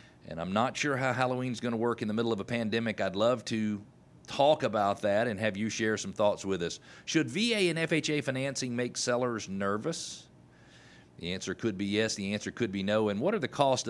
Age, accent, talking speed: 40-59, American, 225 wpm